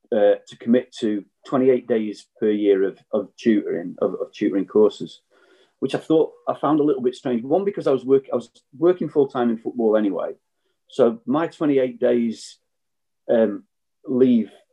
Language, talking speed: English, 185 wpm